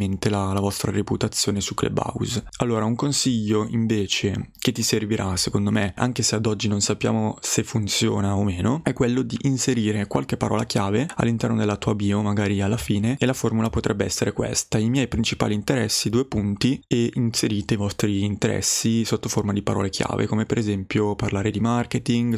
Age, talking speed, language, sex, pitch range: 20-39, 180 wpm, Italian, male, 105-120 Hz